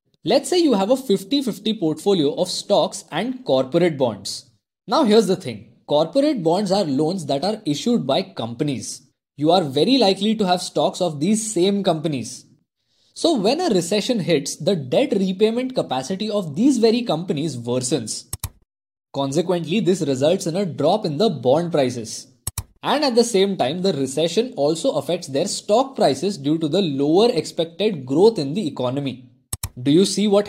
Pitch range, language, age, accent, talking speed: 140-205 Hz, Hindi, 20-39, native, 165 wpm